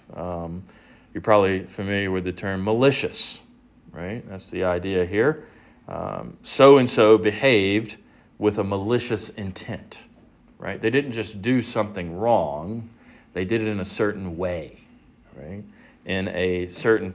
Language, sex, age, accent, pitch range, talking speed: English, male, 40-59, American, 90-110 Hz, 135 wpm